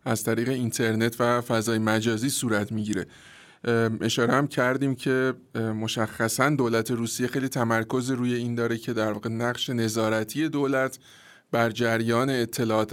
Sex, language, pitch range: male, Persian, 115-140 Hz